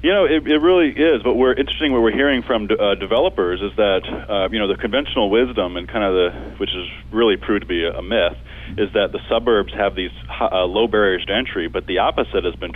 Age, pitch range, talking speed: 30-49, 95-110 Hz, 240 wpm